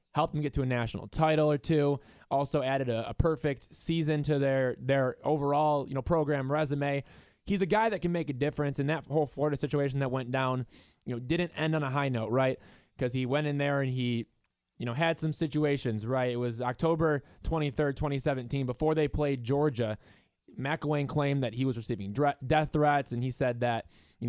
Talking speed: 210 wpm